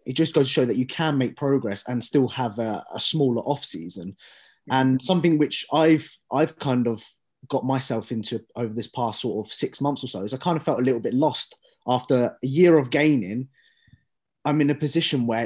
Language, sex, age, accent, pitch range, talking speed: English, male, 20-39, British, 115-140 Hz, 215 wpm